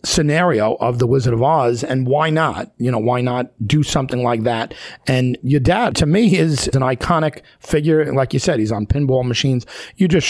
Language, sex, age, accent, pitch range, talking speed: English, male, 40-59, American, 120-160 Hz, 205 wpm